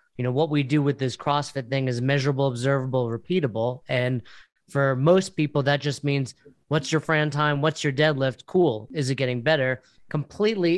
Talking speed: 185 wpm